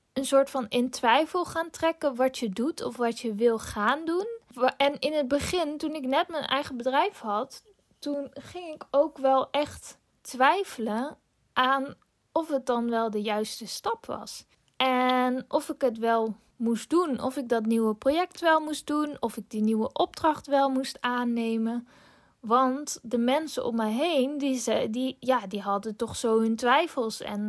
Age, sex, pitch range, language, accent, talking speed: 10-29, female, 225-280 Hz, Dutch, Dutch, 175 wpm